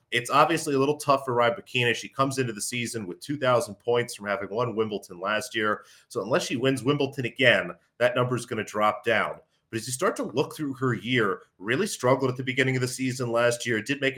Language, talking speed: English, 235 wpm